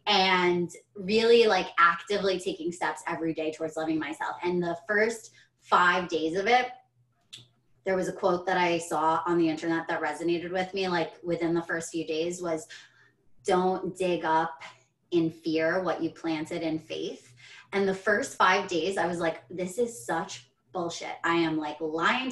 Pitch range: 160-210 Hz